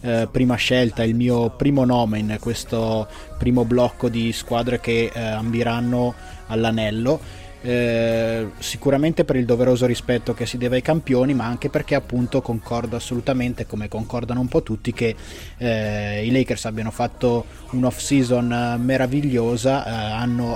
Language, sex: Italian, male